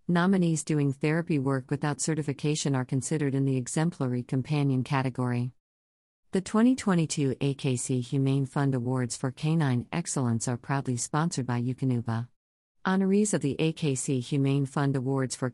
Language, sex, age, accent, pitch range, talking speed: English, female, 50-69, American, 125-155 Hz, 135 wpm